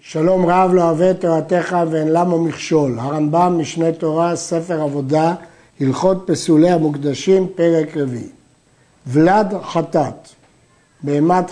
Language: Hebrew